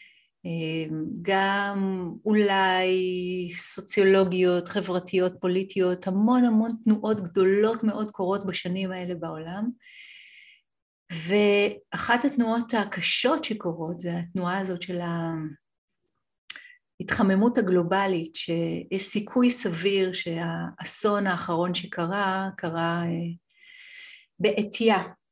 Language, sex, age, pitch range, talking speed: Hebrew, female, 30-49, 175-205 Hz, 75 wpm